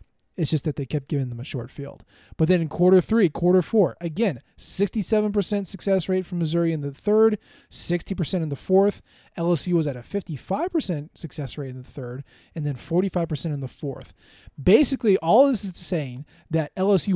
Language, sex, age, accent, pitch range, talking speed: English, male, 20-39, American, 150-190 Hz, 185 wpm